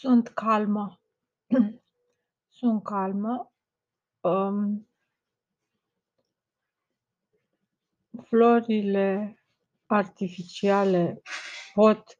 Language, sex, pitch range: Romanian, female, 180-205 Hz